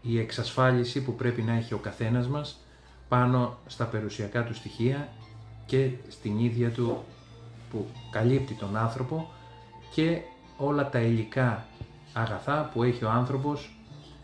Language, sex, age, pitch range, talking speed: Greek, male, 30-49, 110-130 Hz, 130 wpm